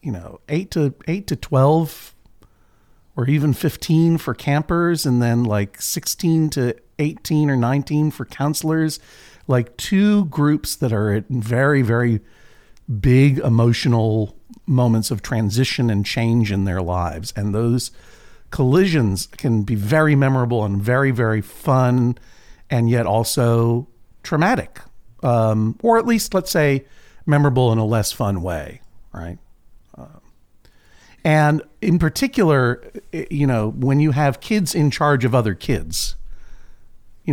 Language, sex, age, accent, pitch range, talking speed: English, male, 50-69, American, 105-145 Hz, 135 wpm